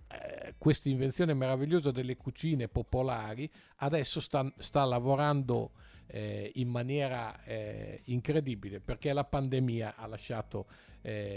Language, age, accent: Italian, 50-69, native